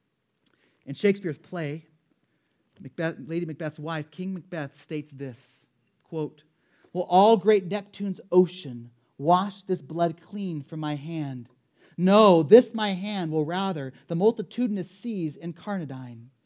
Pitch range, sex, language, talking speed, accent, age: 135-180 Hz, male, English, 125 wpm, American, 30-49